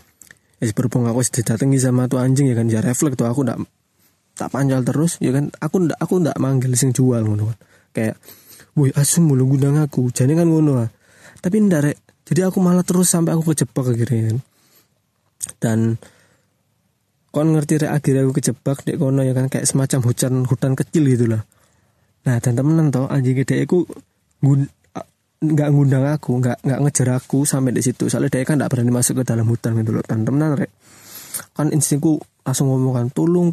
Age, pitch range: 20-39, 125-150 Hz